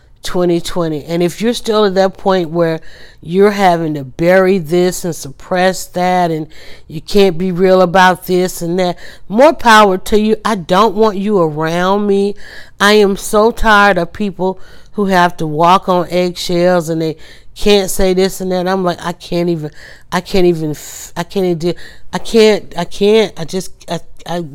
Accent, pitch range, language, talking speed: American, 165-190 Hz, English, 180 wpm